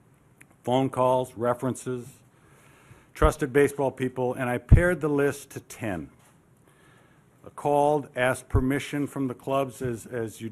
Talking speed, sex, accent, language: 130 wpm, male, American, English